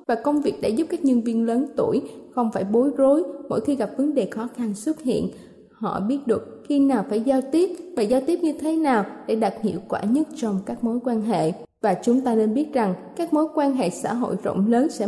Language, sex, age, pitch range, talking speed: Vietnamese, female, 20-39, 220-285 Hz, 245 wpm